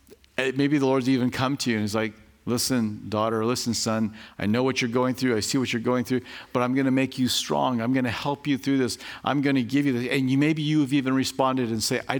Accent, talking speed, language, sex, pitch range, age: American, 270 wpm, English, male, 130-205 Hz, 50-69